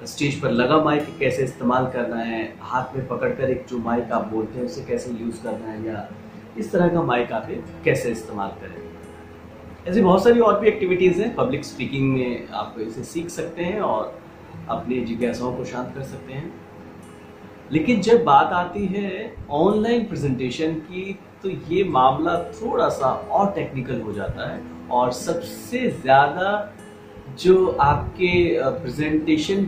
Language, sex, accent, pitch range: Japanese, male, Indian, 120-180 Hz